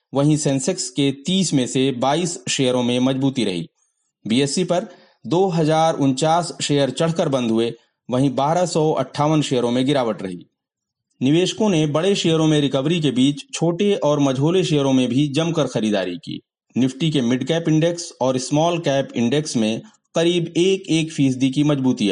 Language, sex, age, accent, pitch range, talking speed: Hindi, male, 30-49, native, 130-170 Hz, 115 wpm